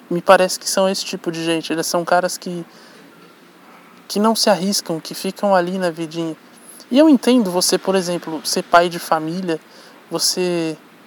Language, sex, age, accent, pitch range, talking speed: Portuguese, male, 20-39, Brazilian, 170-220 Hz, 175 wpm